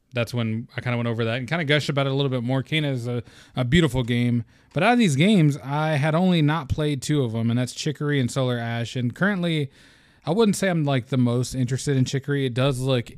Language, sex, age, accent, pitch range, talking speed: English, male, 20-39, American, 115-140 Hz, 265 wpm